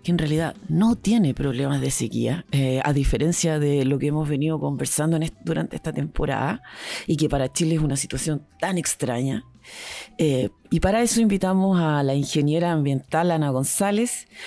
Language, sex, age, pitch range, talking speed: Spanish, female, 40-59, 150-190 Hz, 165 wpm